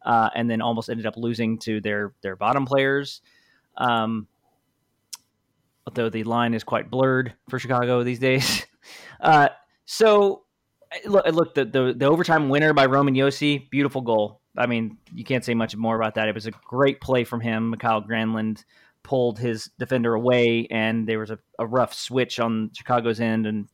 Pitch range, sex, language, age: 115-140 Hz, male, English, 20-39